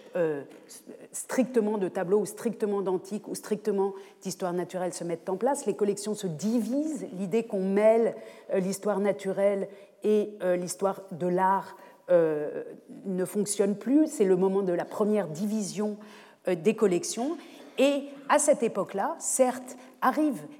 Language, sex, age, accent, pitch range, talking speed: French, female, 40-59, French, 185-225 Hz, 130 wpm